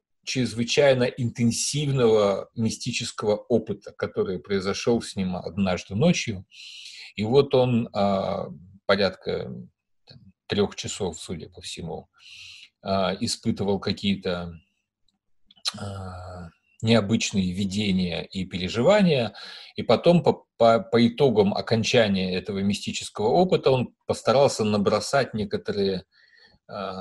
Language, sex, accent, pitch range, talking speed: Russian, male, native, 100-135 Hz, 85 wpm